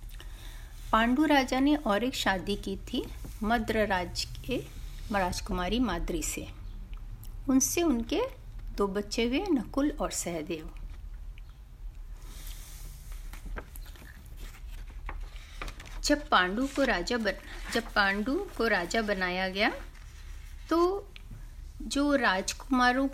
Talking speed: 95 wpm